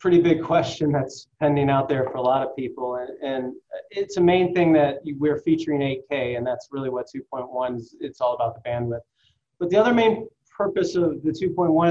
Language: English